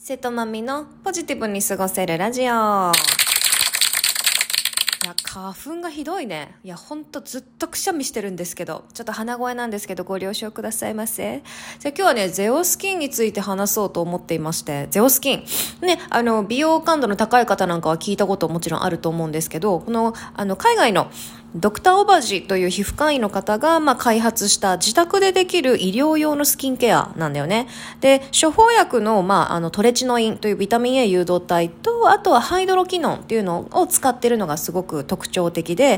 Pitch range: 185-270 Hz